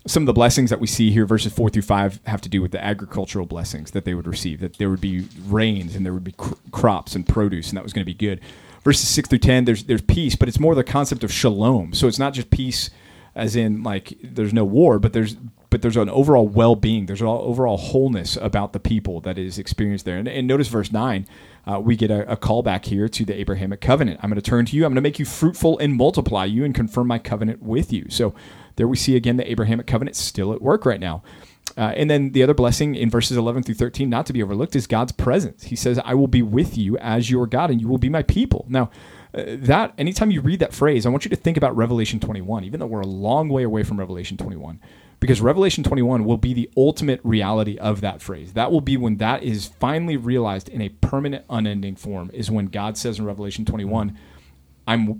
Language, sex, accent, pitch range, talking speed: English, male, American, 100-125 Hz, 250 wpm